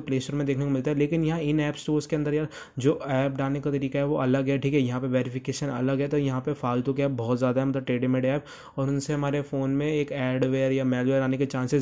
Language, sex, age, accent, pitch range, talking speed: Hindi, male, 20-39, native, 130-145 Hz, 280 wpm